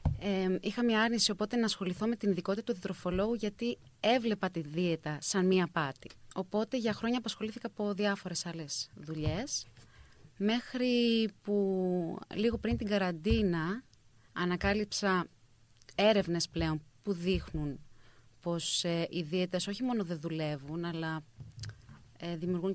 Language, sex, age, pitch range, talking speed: Greek, female, 30-49, 155-205 Hz, 120 wpm